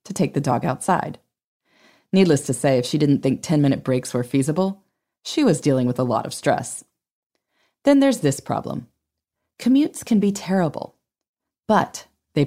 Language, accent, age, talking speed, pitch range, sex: English, American, 20-39, 165 wpm, 140-200 Hz, female